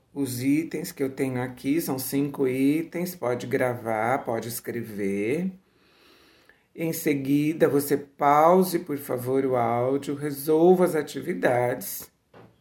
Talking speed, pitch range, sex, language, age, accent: 115 wpm, 125-170 Hz, male, Portuguese, 60-79, Brazilian